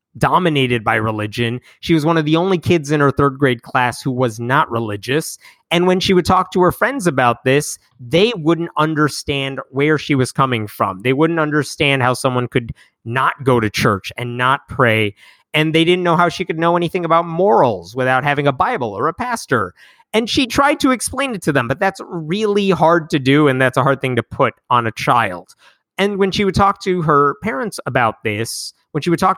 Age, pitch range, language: 30-49, 125-170 Hz, English